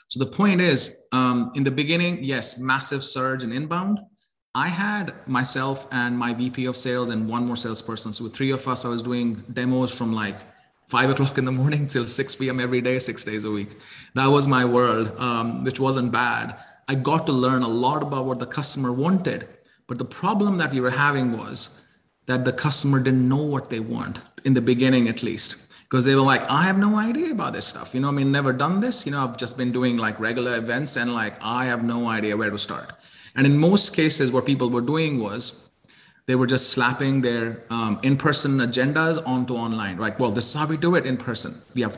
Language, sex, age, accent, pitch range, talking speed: English, male, 30-49, Indian, 120-140 Hz, 225 wpm